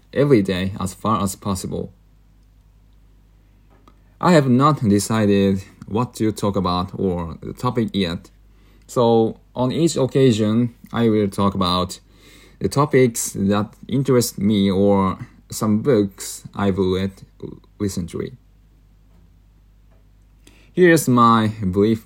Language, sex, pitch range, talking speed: English, male, 90-115 Hz, 110 wpm